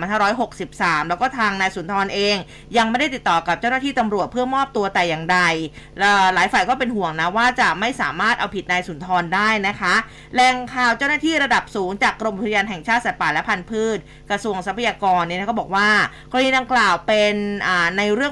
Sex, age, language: female, 20-39, Thai